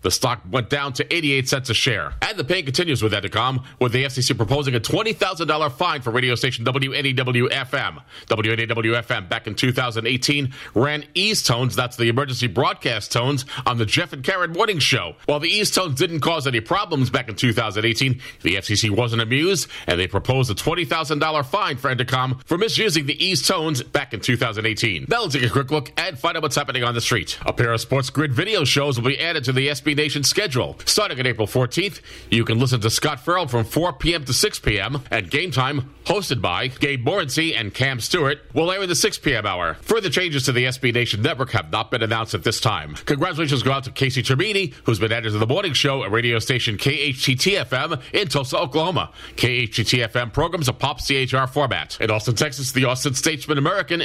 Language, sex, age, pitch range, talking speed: English, male, 40-59, 120-150 Hz, 205 wpm